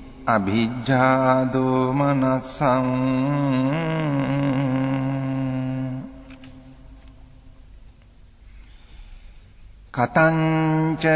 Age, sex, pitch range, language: 50-69, male, 130-140 Hz, English